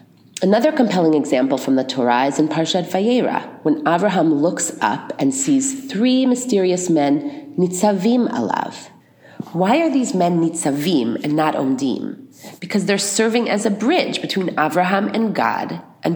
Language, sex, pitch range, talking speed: English, female, 160-250 Hz, 150 wpm